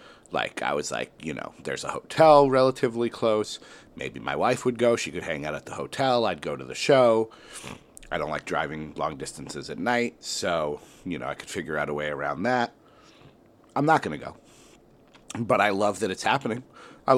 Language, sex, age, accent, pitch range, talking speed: English, male, 40-59, American, 95-125 Hz, 205 wpm